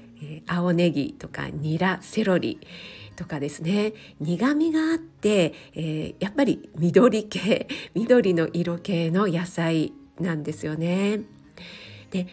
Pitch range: 160-230 Hz